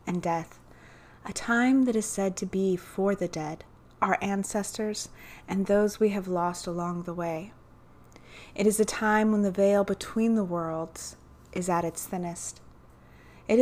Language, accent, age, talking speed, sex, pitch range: English, American, 30-49, 165 wpm, female, 175-215 Hz